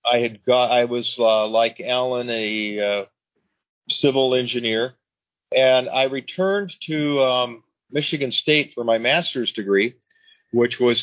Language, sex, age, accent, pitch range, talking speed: English, male, 40-59, American, 115-130 Hz, 135 wpm